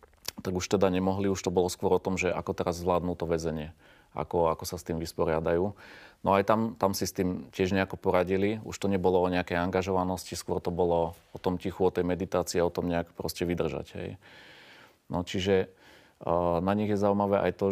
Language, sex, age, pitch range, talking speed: Slovak, male, 30-49, 85-100 Hz, 210 wpm